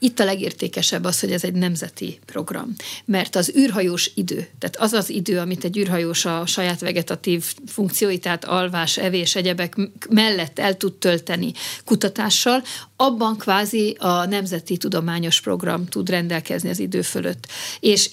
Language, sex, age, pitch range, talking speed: Hungarian, female, 50-69, 175-195 Hz, 145 wpm